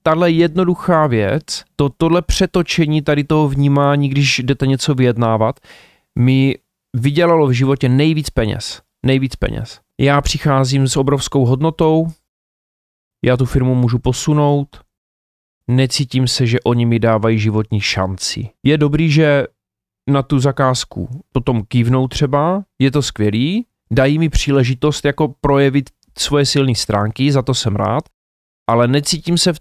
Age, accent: 30-49, native